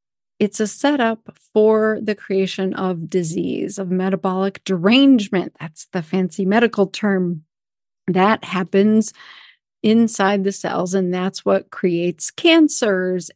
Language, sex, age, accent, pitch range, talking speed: English, female, 40-59, American, 195-260 Hz, 115 wpm